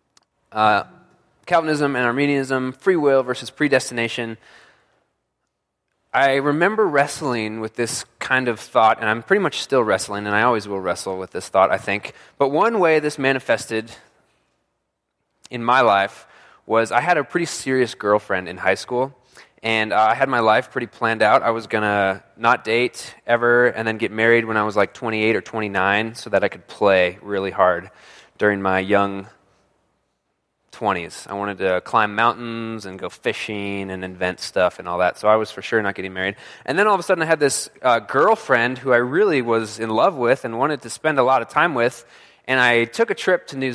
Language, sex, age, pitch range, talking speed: English, male, 20-39, 105-145 Hz, 195 wpm